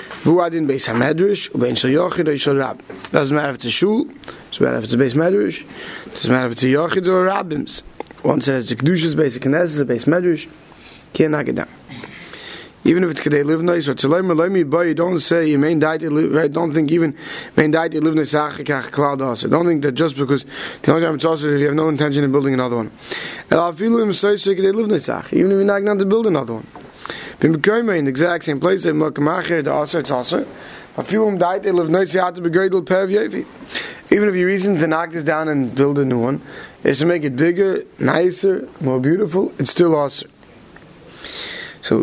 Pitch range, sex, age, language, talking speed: 145-180 Hz, male, 30-49, English, 200 wpm